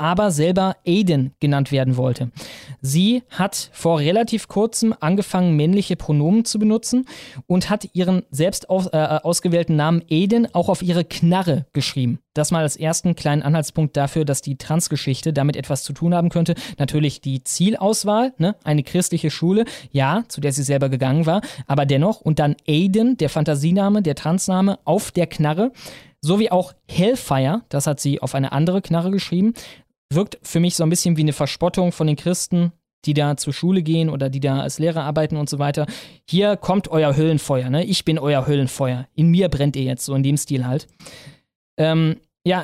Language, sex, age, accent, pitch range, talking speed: German, male, 20-39, German, 145-180 Hz, 185 wpm